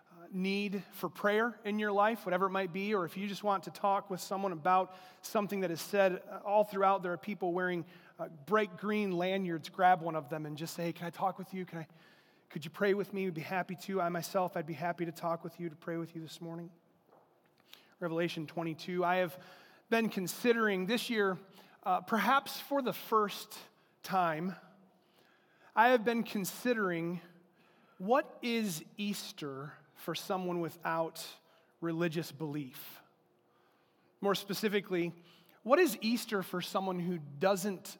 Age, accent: 30-49, American